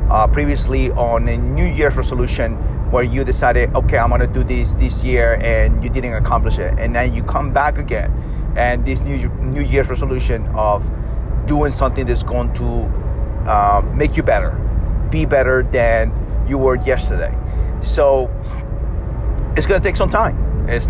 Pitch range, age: 90-120 Hz, 30-49